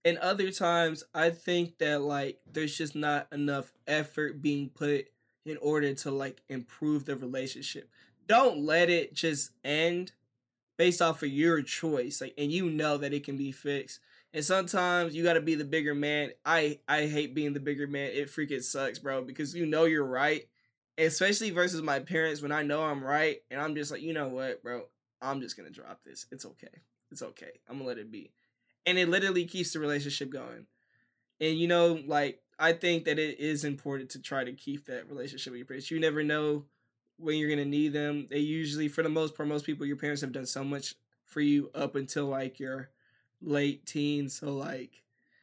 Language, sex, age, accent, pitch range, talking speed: English, male, 20-39, American, 140-160 Hz, 205 wpm